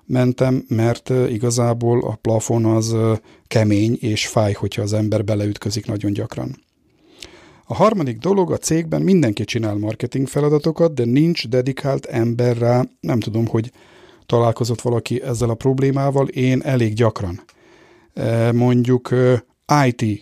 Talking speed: 125 wpm